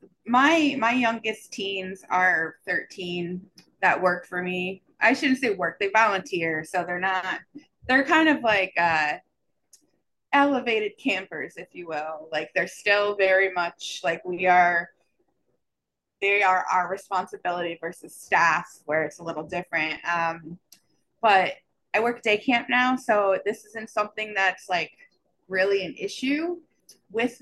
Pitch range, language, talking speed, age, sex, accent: 180-215 Hz, English, 140 wpm, 20-39, female, American